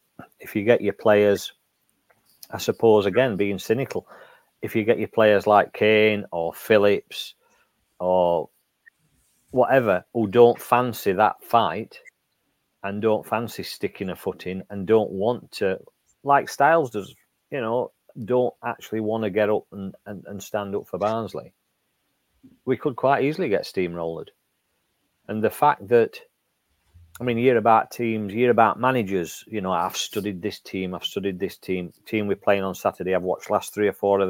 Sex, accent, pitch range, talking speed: male, British, 95-120 Hz, 170 wpm